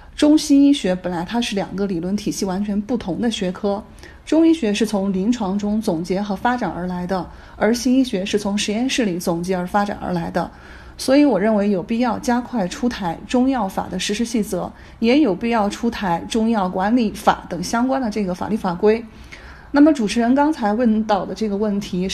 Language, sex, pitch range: Chinese, female, 195-235 Hz